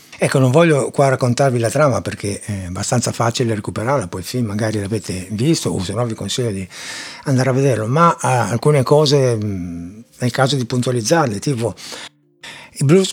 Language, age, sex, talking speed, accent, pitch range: Italian, 60-79, male, 165 wpm, native, 120-160 Hz